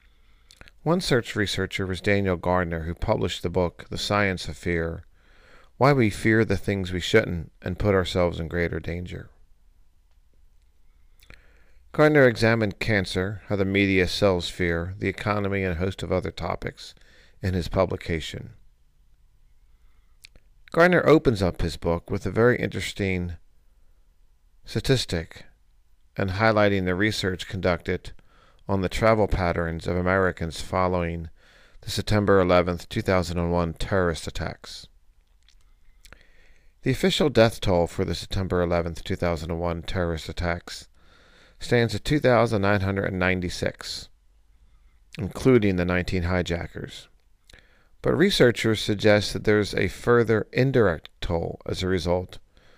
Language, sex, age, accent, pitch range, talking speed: English, male, 50-69, American, 85-105 Hz, 120 wpm